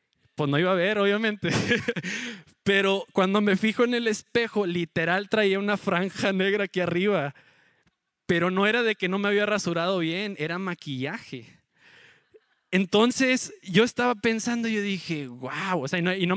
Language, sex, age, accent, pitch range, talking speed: Spanish, male, 20-39, Mexican, 170-220 Hz, 170 wpm